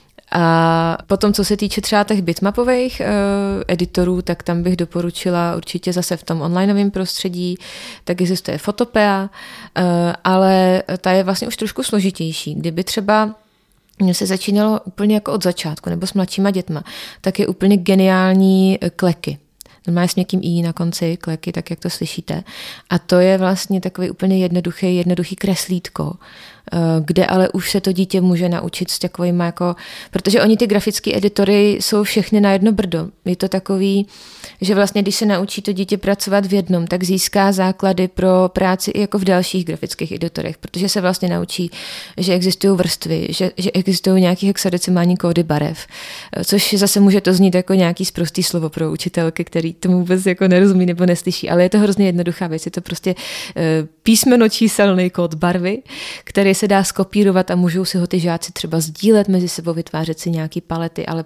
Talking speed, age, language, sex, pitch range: 170 wpm, 30-49, Czech, female, 175-200 Hz